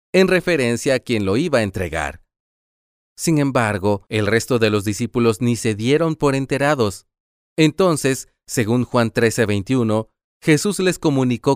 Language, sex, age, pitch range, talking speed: Spanish, male, 30-49, 105-160 Hz, 145 wpm